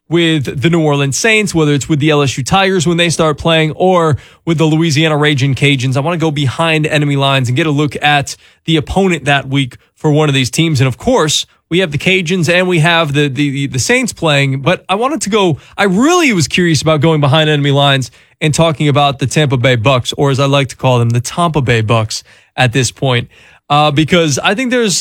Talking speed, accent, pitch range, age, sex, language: 235 wpm, American, 145-190 Hz, 20-39, male, English